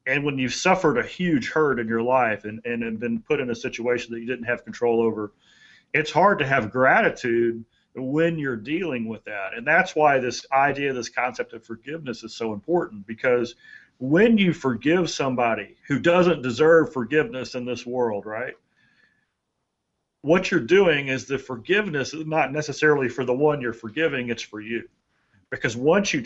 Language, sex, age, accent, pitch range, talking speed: English, male, 40-59, American, 115-145 Hz, 180 wpm